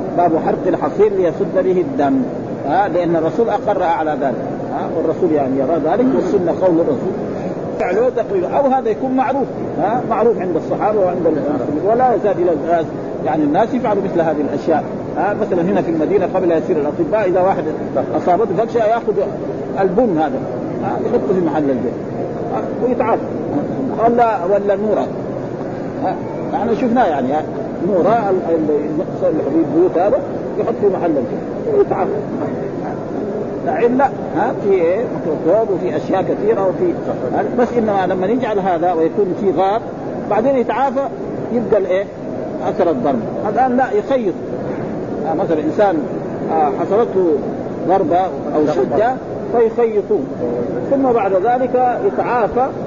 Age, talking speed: 50-69, 140 wpm